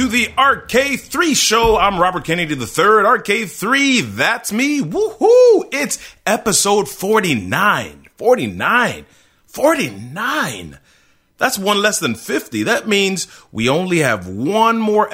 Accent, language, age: American, English, 30-49